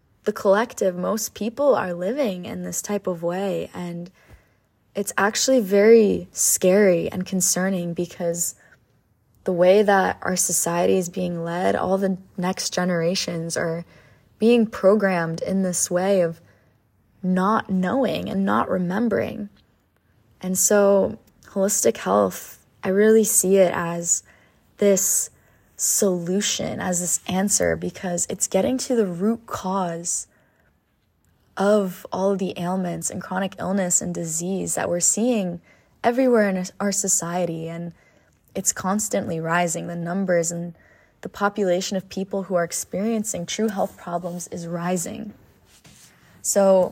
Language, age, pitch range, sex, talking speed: English, 20-39, 170-200 Hz, female, 130 wpm